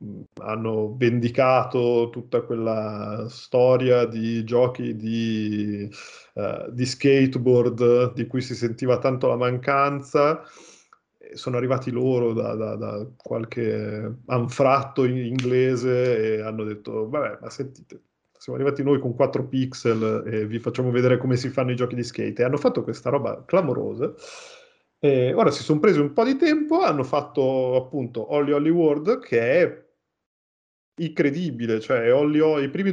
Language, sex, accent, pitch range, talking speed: Italian, male, native, 120-145 Hz, 140 wpm